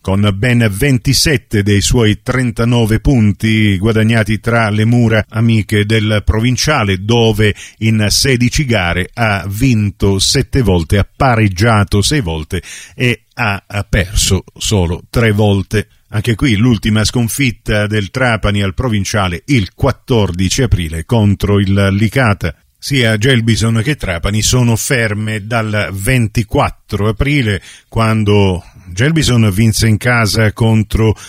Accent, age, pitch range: native, 50-69, 105-125 Hz